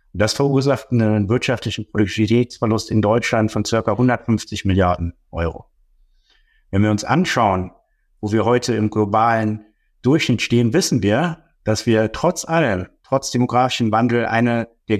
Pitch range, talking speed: 105-125 Hz, 135 wpm